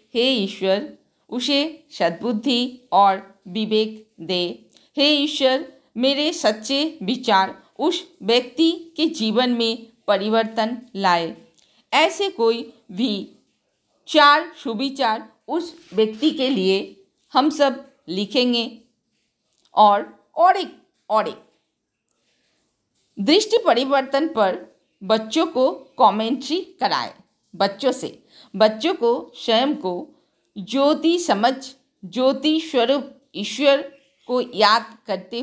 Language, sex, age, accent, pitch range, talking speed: Hindi, female, 50-69, native, 200-275 Hz, 100 wpm